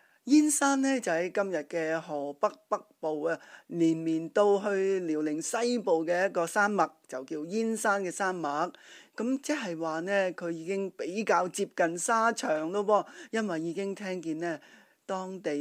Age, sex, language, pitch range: 20-39, male, Chinese, 170-225 Hz